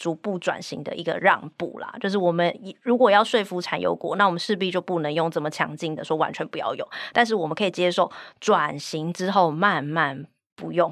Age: 20-39